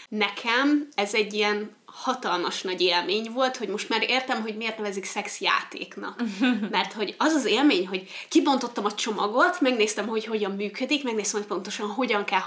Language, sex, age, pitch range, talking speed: Hungarian, female, 20-39, 205-255 Hz, 170 wpm